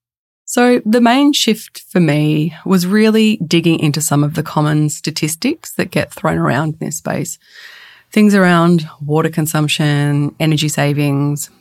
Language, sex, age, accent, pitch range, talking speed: English, female, 20-39, Australian, 150-205 Hz, 145 wpm